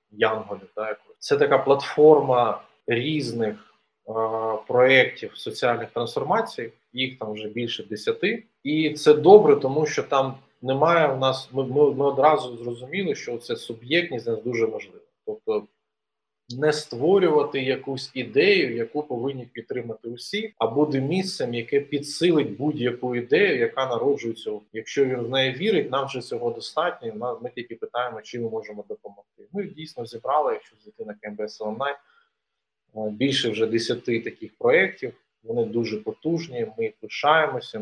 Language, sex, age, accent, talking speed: Ukrainian, male, 20-39, native, 135 wpm